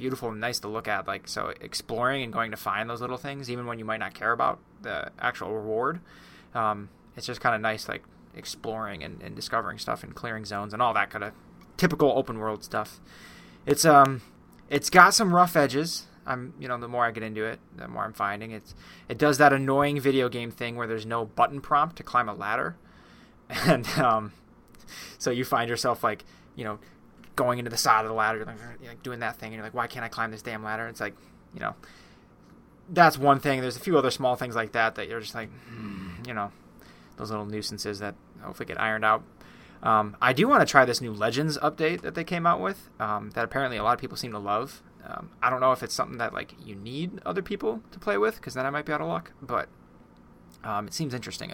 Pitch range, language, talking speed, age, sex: 105-135 Hz, English, 235 wpm, 20-39, male